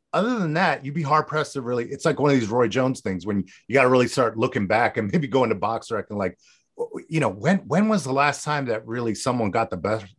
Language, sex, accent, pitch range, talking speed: English, male, American, 100-135 Hz, 270 wpm